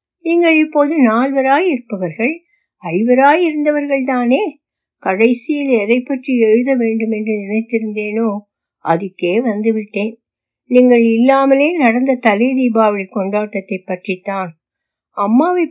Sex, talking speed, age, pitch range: female, 90 wpm, 60-79, 210-285 Hz